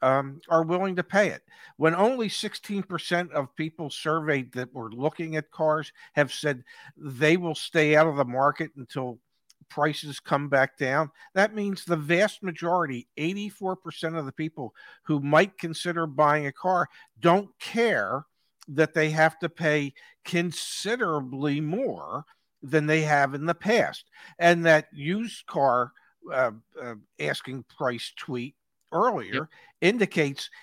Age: 50-69